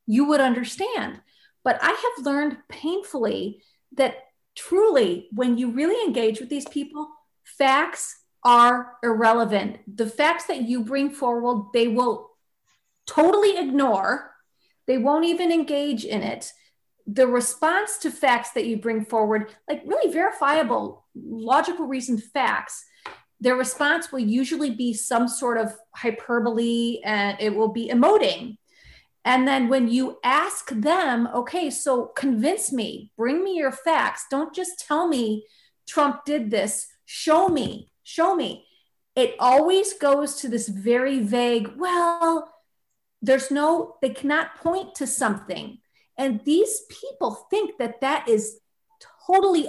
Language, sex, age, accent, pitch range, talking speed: English, female, 40-59, American, 235-315 Hz, 135 wpm